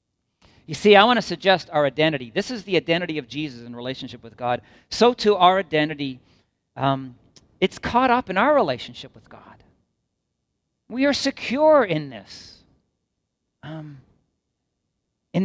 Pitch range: 130-185 Hz